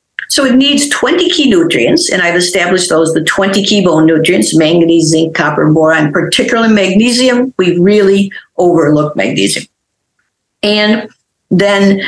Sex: female